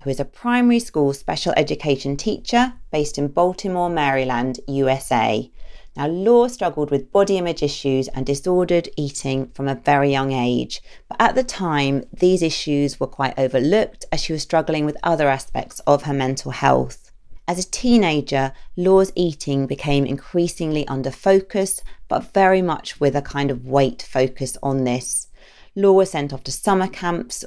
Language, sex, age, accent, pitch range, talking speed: English, female, 40-59, British, 135-175 Hz, 165 wpm